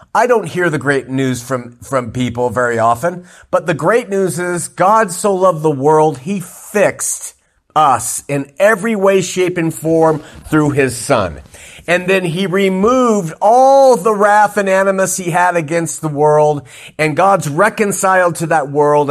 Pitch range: 145-185 Hz